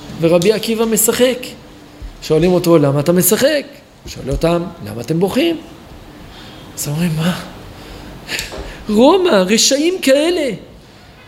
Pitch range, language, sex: 175-270 Hz, Hebrew, male